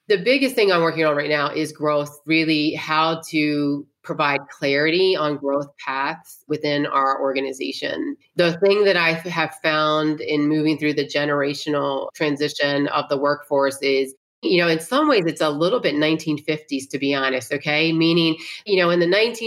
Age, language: 30-49, English